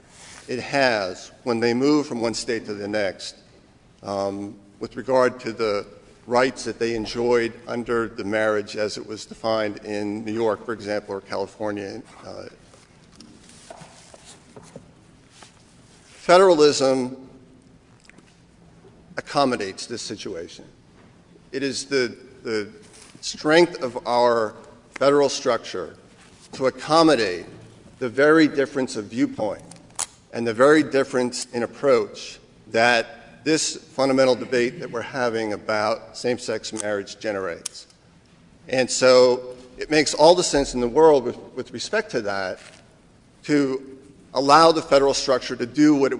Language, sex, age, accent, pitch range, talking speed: English, male, 50-69, American, 115-140 Hz, 125 wpm